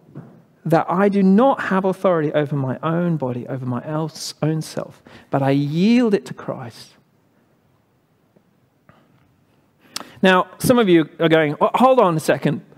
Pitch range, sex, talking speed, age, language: 140-195 Hz, male, 145 wpm, 40-59, English